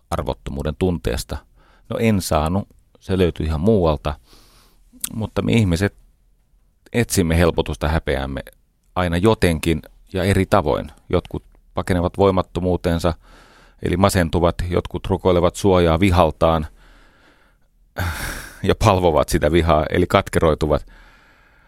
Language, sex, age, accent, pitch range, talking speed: Finnish, male, 30-49, native, 80-95 Hz, 95 wpm